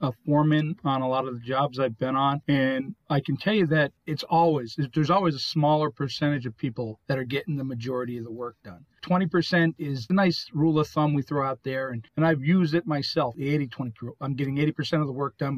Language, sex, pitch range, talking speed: English, male, 130-160 Hz, 240 wpm